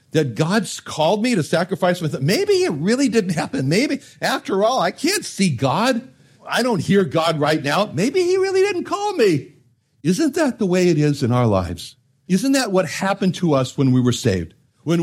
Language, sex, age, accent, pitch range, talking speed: English, male, 60-79, American, 145-215 Hz, 200 wpm